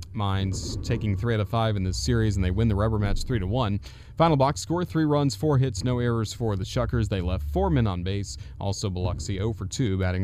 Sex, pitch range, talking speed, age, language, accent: male, 95-120 Hz, 235 wpm, 30-49, English, American